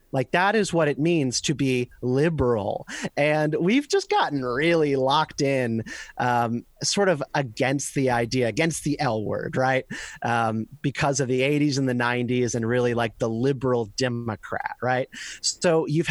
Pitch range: 125-160 Hz